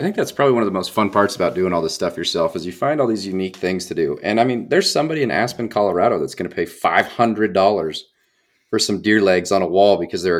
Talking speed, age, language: 270 wpm, 30-49, English